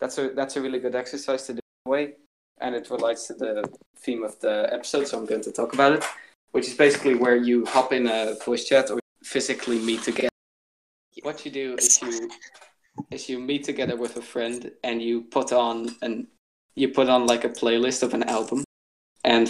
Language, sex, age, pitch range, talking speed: English, male, 20-39, 115-130 Hz, 210 wpm